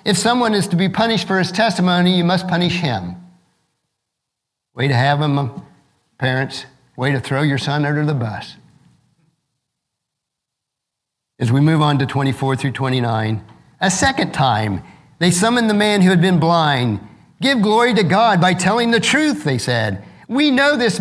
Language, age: English, 50-69